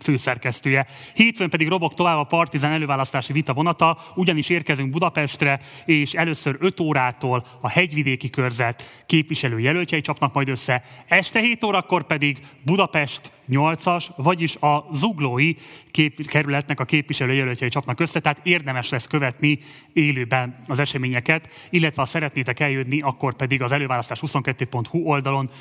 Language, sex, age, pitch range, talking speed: Hungarian, male, 30-49, 125-155 Hz, 130 wpm